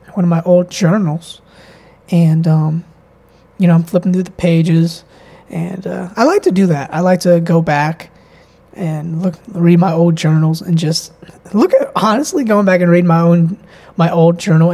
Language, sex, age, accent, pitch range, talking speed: English, male, 20-39, American, 160-185 Hz, 185 wpm